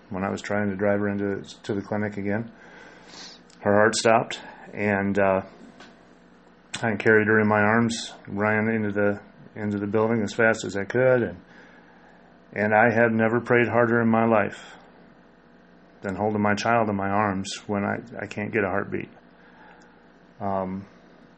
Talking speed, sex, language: 165 wpm, male, English